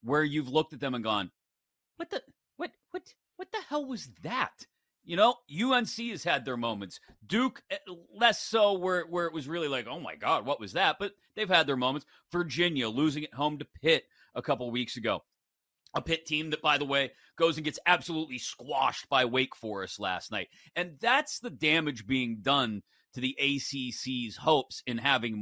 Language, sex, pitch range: English, male, 140-200 Hz